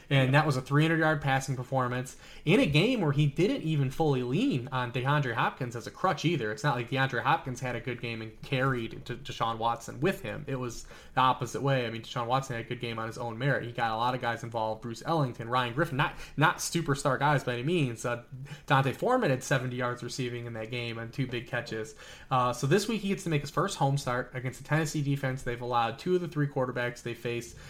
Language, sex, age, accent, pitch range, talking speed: English, male, 20-39, American, 120-140 Hz, 245 wpm